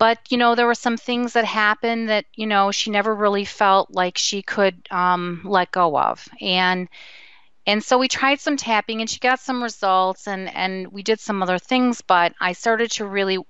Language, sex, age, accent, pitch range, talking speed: English, female, 30-49, American, 165-205 Hz, 210 wpm